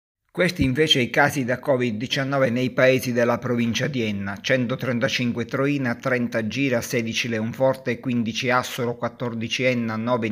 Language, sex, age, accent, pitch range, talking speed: Italian, male, 50-69, native, 115-130 Hz, 135 wpm